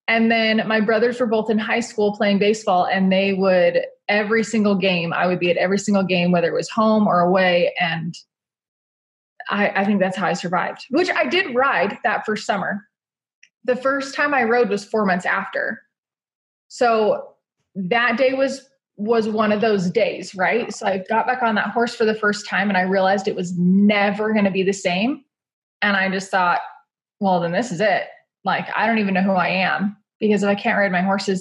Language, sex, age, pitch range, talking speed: English, female, 20-39, 185-230 Hz, 210 wpm